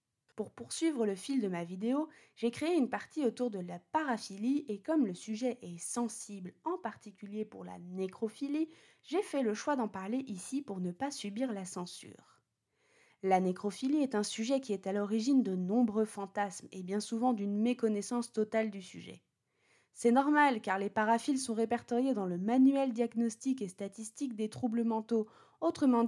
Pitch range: 205-265 Hz